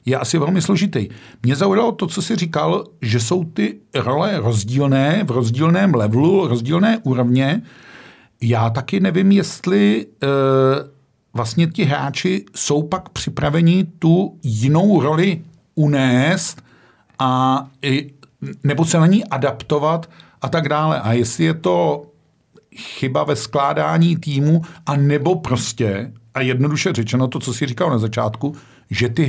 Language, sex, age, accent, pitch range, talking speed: Czech, male, 50-69, native, 125-160 Hz, 130 wpm